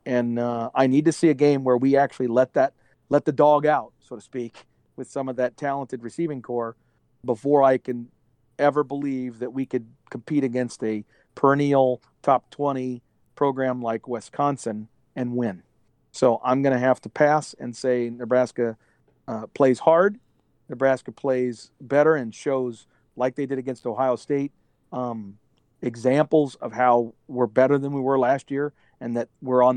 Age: 40-59